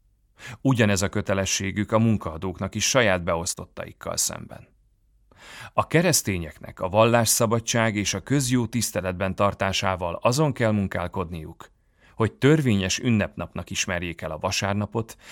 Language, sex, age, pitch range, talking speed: Hungarian, male, 30-49, 95-115 Hz, 110 wpm